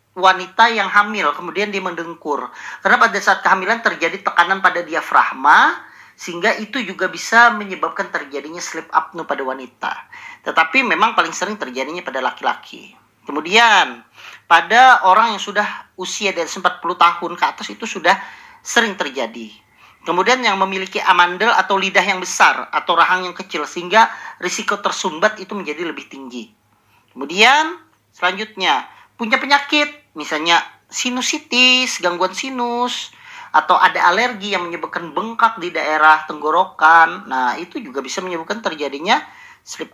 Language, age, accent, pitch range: Indonesian, 40-59, native, 170-230 Hz